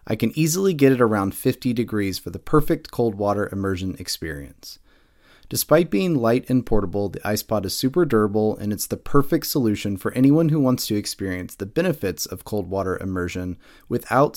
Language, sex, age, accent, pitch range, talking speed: English, male, 30-49, American, 100-135 Hz, 185 wpm